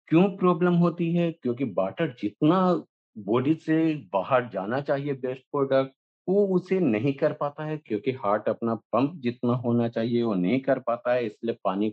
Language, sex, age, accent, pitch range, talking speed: English, male, 50-69, Indian, 105-130 Hz, 170 wpm